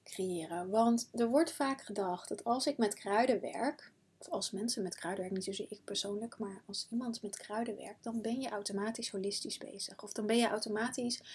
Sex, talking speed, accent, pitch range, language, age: female, 205 wpm, Dutch, 195-235 Hz, Dutch, 30-49